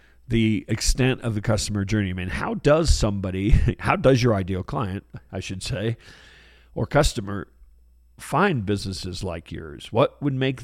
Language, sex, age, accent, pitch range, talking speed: English, male, 50-69, American, 95-130 Hz, 160 wpm